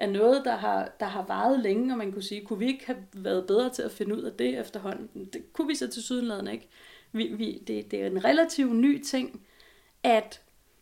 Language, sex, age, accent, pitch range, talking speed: Danish, female, 40-59, native, 210-260 Hz, 235 wpm